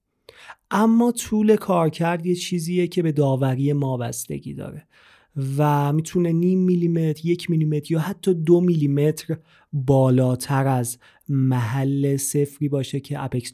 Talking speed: 120 wpm